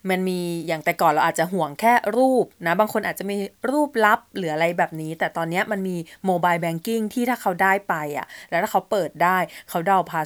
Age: 20-39